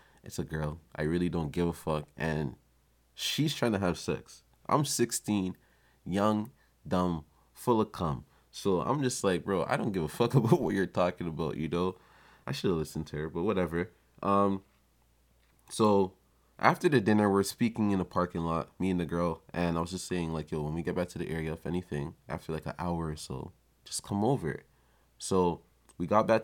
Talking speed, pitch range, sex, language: 205 wpm, 80-95 Hz, male, English